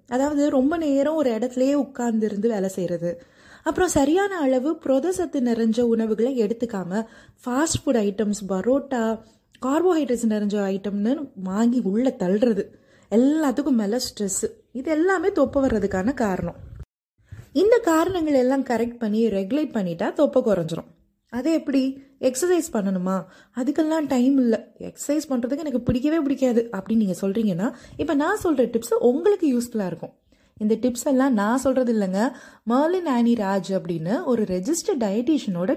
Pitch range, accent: 215-290 Hz, native